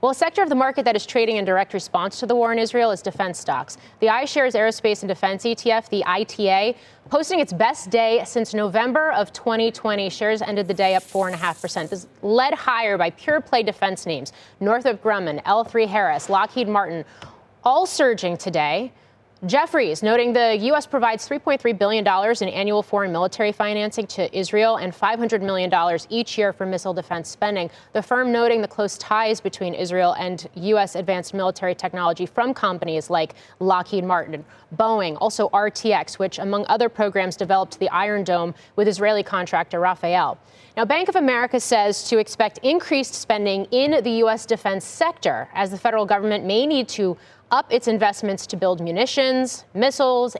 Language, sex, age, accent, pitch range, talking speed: English, female, 30-49, American, 190-235 Hz, 175 wpm